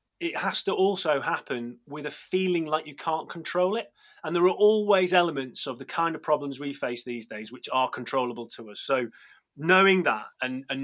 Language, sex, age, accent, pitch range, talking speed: English, male, 30-49, British, 135-175 Hz, 205 wpm